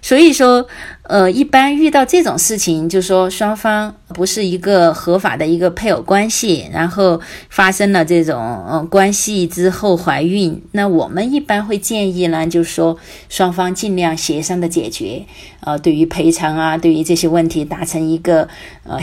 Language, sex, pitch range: Chinese, female, 165-205 Hz